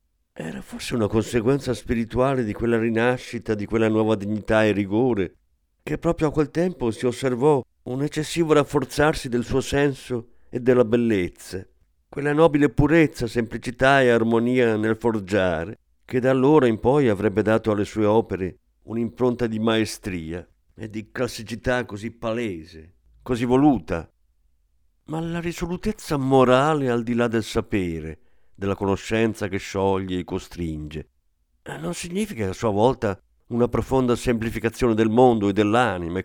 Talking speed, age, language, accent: 140 wpm, 50-69, Italian, native